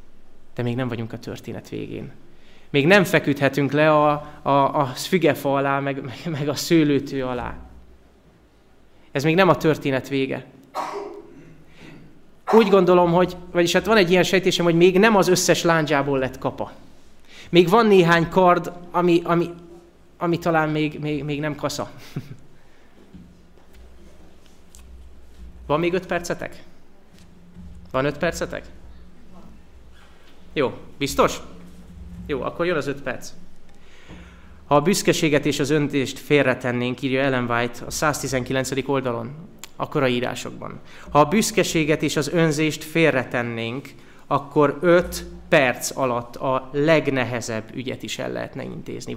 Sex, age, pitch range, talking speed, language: male, 30-49, 125-170 Hz, 130 wpm, Hungarian